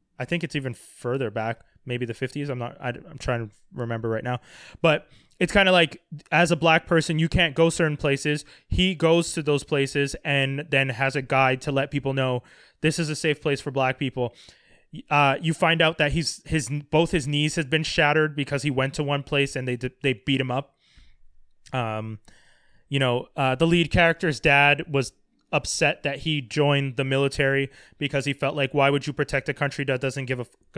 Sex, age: male, 20-39